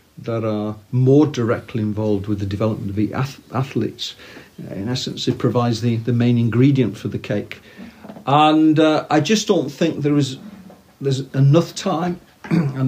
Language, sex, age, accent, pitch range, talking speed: English, male, 50-69, British, 110-140 Hz, 160 wpm